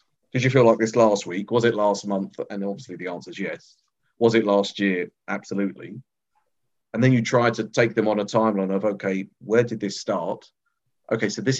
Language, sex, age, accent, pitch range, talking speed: English, male, 40-59, British, 100-115 Hz, 210 wpm